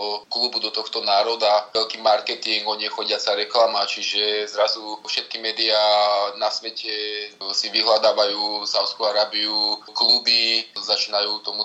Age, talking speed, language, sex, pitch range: 20-39, 125 wpm, Slovak, male, 100-110 Hz